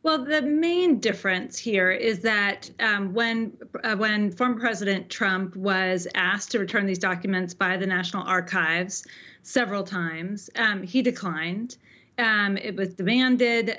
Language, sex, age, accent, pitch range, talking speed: English, female, 30-49, American, 185-220 Hz, 145 wpm